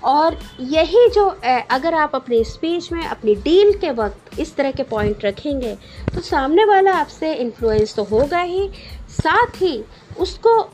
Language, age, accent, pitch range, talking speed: Hindi, 50-69, native, 230-330 Hz, 160 wpm